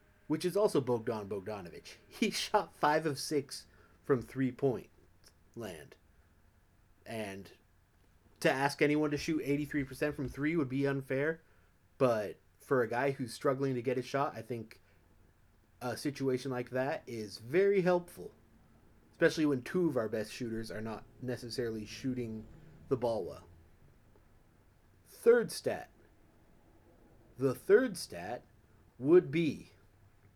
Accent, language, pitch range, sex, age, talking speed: American, English, 100-150 Hz, male, 30-49, 130 wpm